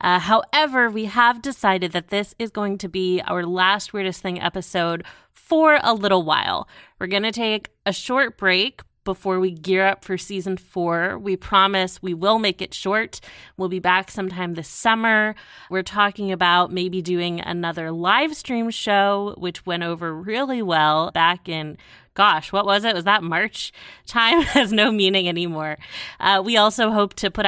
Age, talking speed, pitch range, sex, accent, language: 20-39, 175 wpm, 175-215 Hz, female, American, English